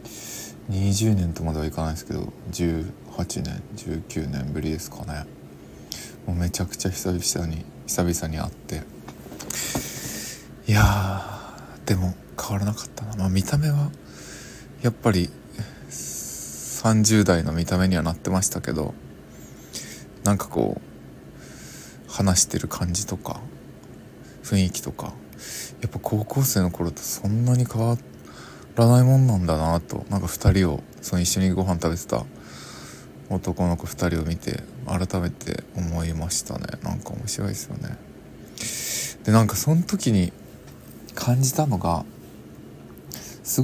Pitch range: 75-110 Hz